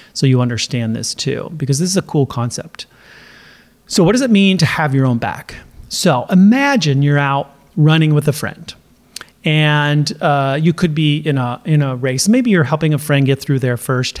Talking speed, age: 200 wpm, 30-49